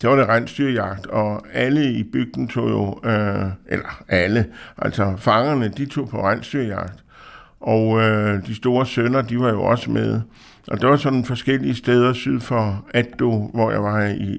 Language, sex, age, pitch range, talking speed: Danish, male, 60-79, 100-120 Hz, 180 wpm